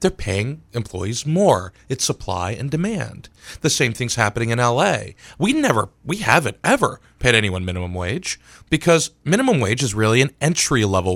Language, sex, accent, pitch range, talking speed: English, male, American, 100-140 Hz, 165 wpm